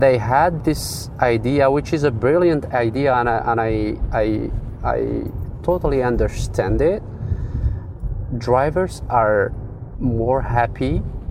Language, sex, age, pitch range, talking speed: English, male, 30-49, 105-125 Hz, 110 wpm